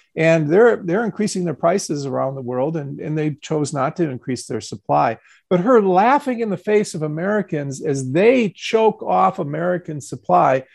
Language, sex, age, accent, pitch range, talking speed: English, male, 50-69, American, 150-200 Hz, 180 wpm